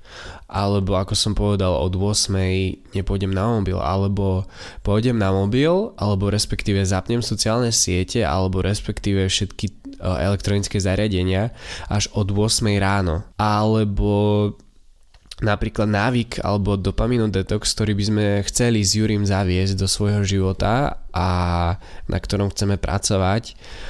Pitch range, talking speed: 95-105 Hz, 120 wpm